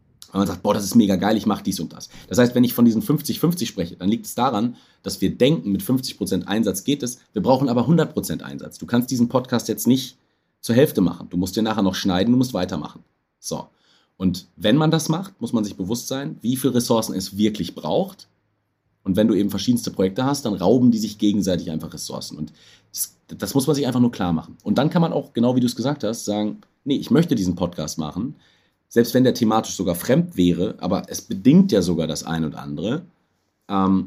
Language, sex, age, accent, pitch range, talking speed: German, male, 40-59, German, 95-125 Hz, 235 wpm